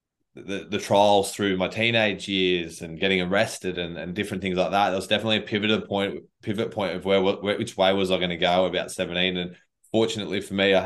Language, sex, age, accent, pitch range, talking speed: English, male, 20-39, Australian, 90-100 Hz, 225 wpm